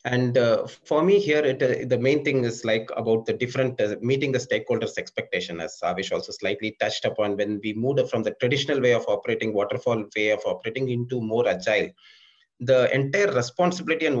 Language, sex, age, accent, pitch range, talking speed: English, male, 30-49, Indian, 125-185 Hz, 190 wpm